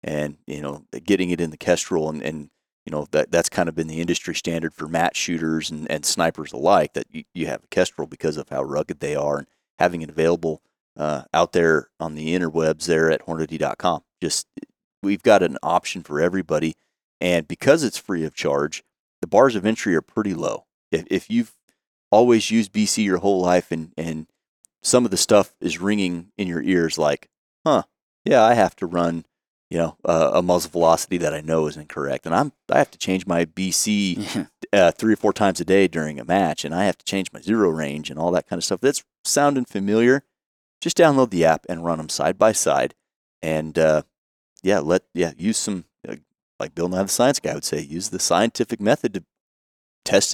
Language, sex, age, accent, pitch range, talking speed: English, male, 30-49, American, 80-95 Hz, 210 wpm